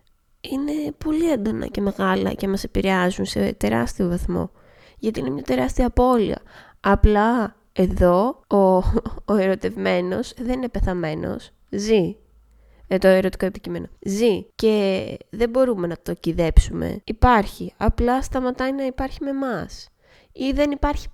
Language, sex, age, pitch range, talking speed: Greek, female, 20-39, 180-255 Hz, 130 wpm